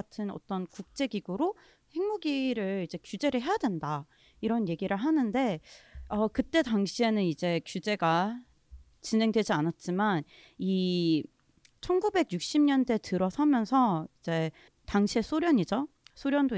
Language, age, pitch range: Korean, 30-49, 180-270 Hz